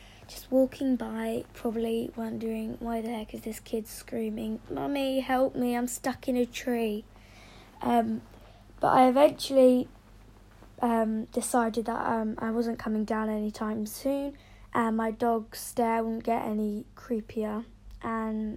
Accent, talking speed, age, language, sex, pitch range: British, 140 wpm, 20-39, English, female, 150-245 Hz